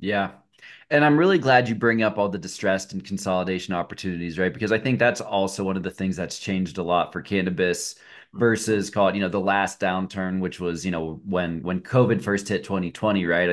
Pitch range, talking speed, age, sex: 95-115 Hz, 215 wpm, 30-49, male